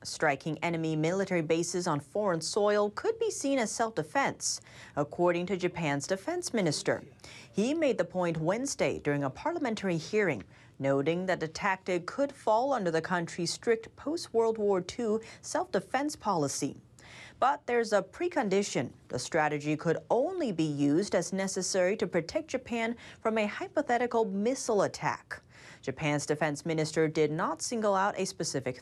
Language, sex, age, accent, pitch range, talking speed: English, female, 30-49, American, 165-230 Hz, 145 wpm